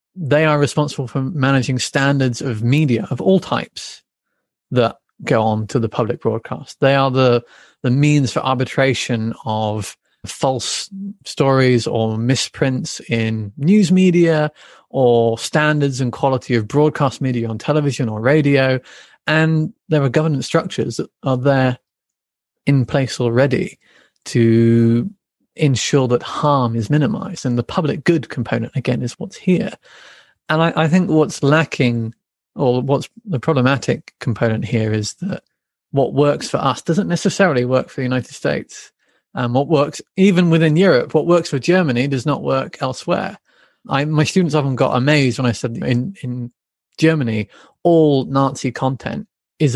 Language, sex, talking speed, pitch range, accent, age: English, male, 150 wpm, 125-155 Hz, British, 30-49